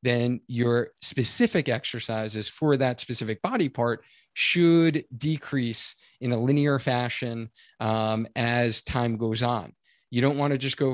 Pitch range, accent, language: 115-145 Hz, American, English